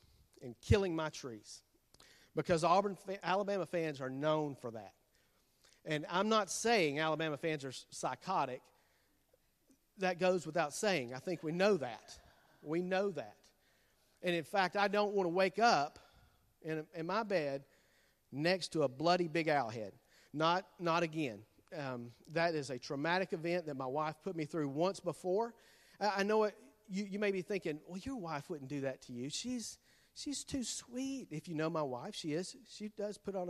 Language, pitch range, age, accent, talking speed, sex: English, 155-205 Hz, 50-69, American, 185 wpm, male